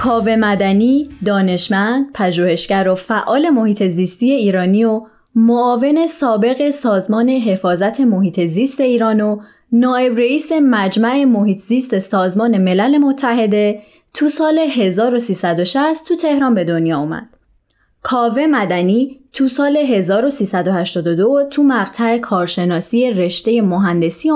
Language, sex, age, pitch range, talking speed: Persian, female, 20-39, 195-275 Hz, 110 wpm